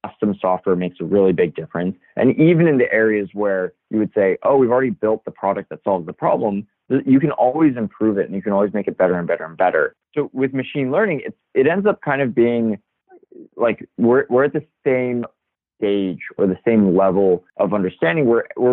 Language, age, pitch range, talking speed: English, 20-39, 95-120 Hz, 210 wpm